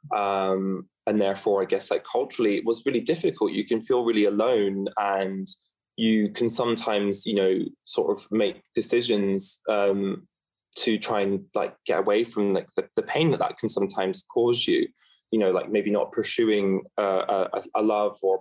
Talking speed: 180 wpm